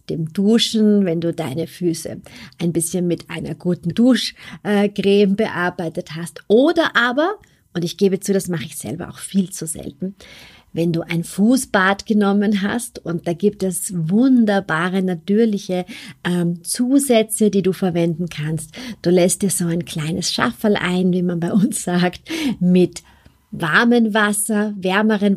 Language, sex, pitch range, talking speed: German, female, 170-215 Hz, 145 wpm